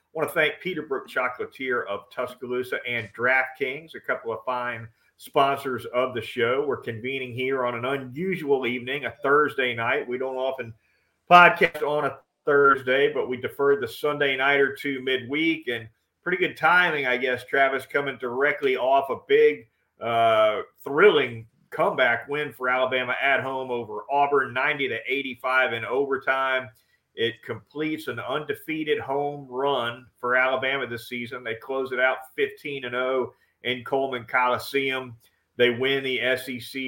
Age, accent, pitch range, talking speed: 40-59, American, 120-140 Hz, 155 wpm